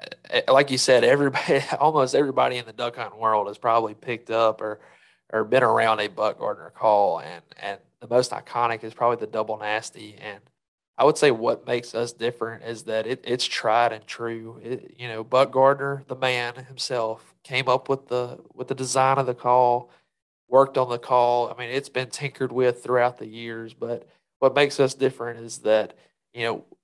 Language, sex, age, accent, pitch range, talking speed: English, male, 30-49, American, 110-130 Hz, 195 wpm